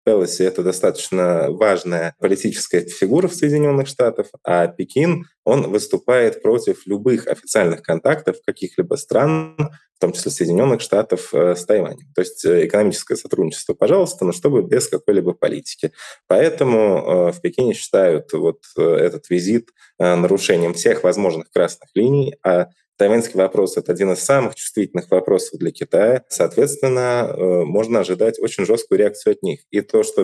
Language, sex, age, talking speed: Russian, male, 20-39, 140 wpm